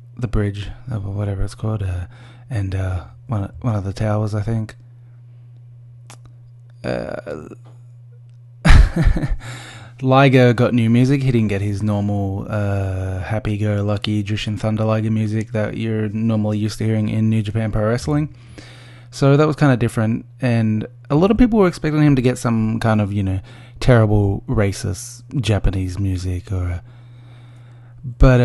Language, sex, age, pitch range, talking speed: English, male, 20-39, 105-120 Hz, 150 wpm